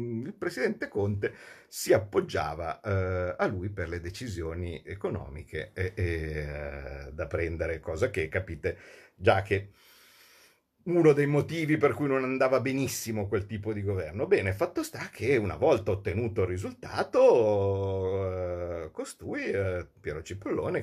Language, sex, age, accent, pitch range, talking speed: Italian, male, 50-69, native, 90-105 Hz, 135 wpm